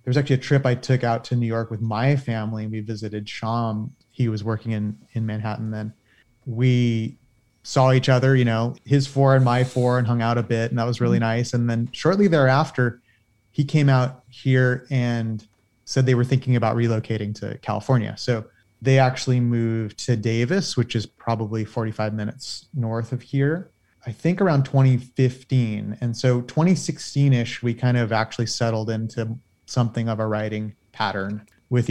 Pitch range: 110-130 Hz